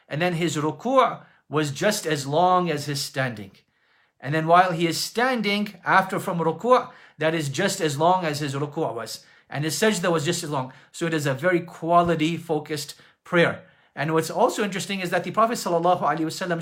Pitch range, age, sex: 140-175 Hz, 40-59, male